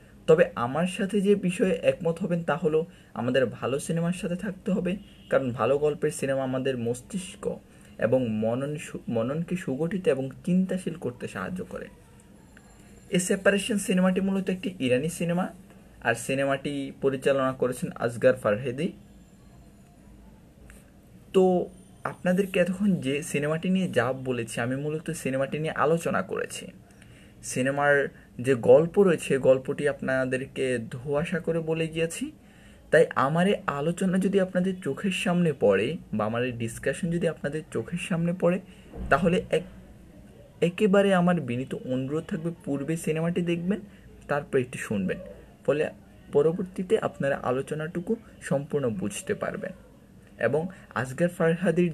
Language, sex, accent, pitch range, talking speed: Bengali, male, native, 135-185 Hz, 30 wpm